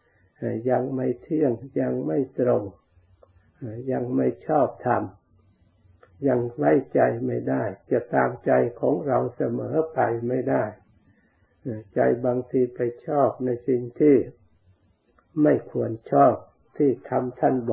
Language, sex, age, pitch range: Thai, male, 60-79, 105-130 Hz